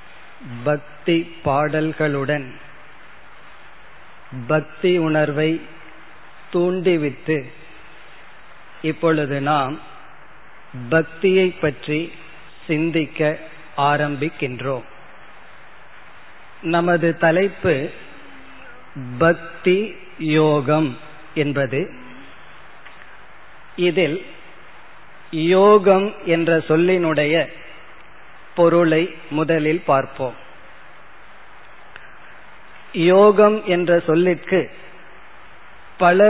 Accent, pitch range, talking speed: native, 150-175 Hz, 45 wpm